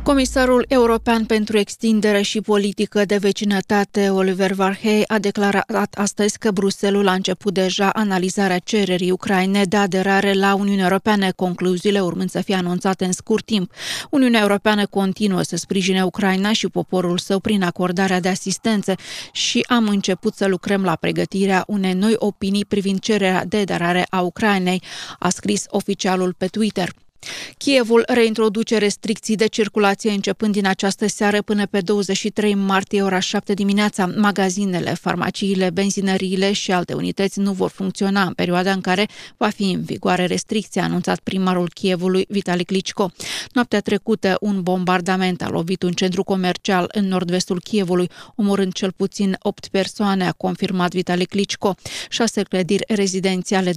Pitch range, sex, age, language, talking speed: 185-205 Hz, female, 20-39, Romanian, 145 wpm